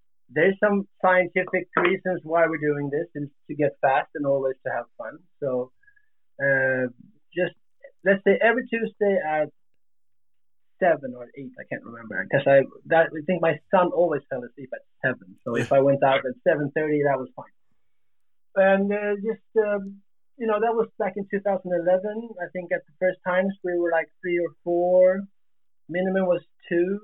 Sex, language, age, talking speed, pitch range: male, Danish, 30-49, 175 wpm, 140-195 Hz